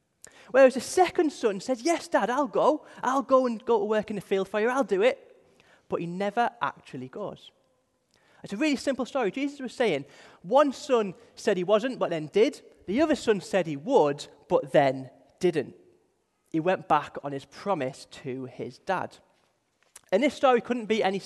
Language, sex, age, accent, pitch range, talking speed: English, male, 20-39, British, 175-270 Hz, 190 wpm